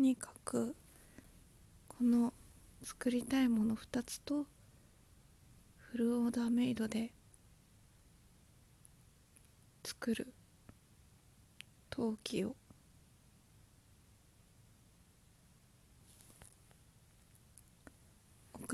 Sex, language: female, Japanese